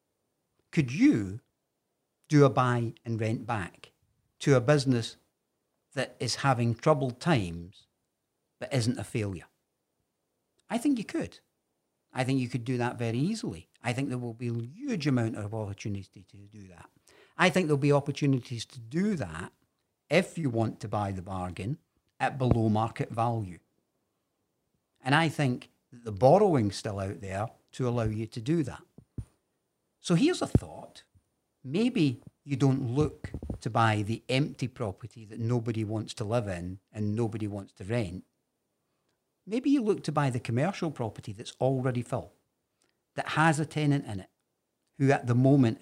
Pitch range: 110-140 Hz